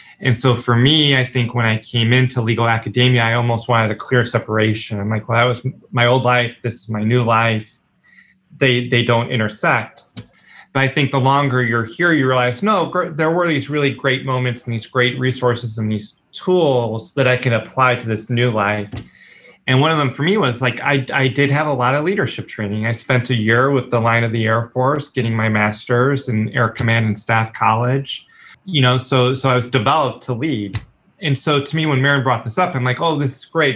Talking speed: 230 wpm